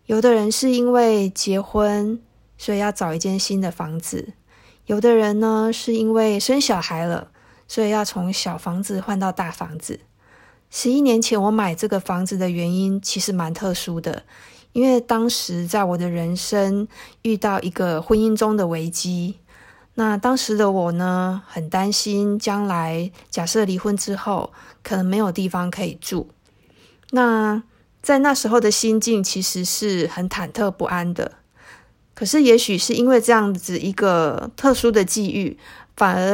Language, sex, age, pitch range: Chinese, female, 20-39, 185-225 Hz